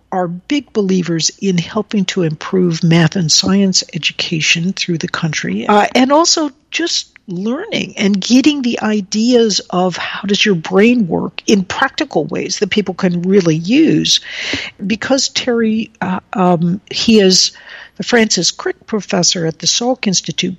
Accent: American